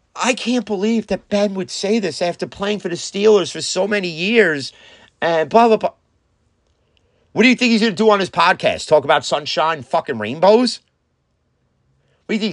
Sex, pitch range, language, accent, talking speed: male, 135-190 Hz, English, American, 190 wpm